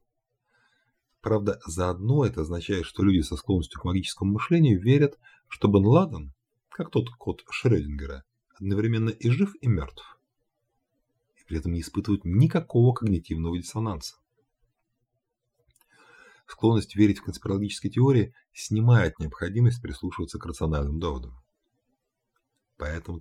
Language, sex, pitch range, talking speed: Russian, male, 80-115 Hz, 115 wpm